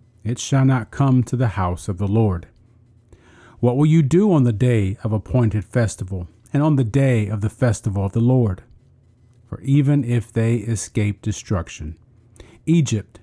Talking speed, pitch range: 170 wpm, 105-130 Hz